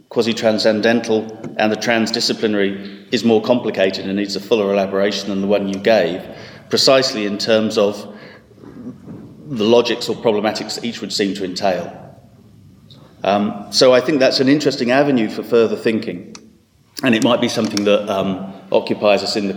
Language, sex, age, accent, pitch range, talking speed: English, male, 40-59, British, 100-115 Hz, 165 wpm